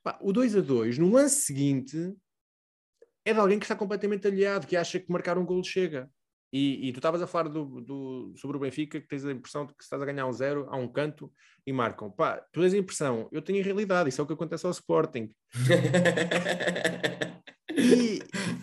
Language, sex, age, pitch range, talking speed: Portuguese, male, 20-39, 125-175 Hz, 210 wpm